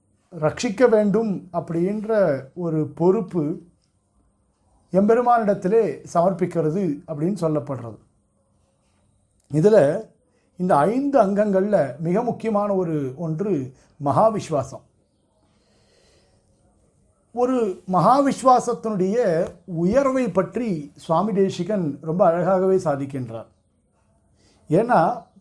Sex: male